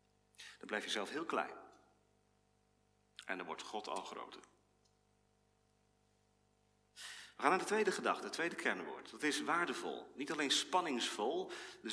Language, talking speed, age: Dutch, 140 wpm, 40-59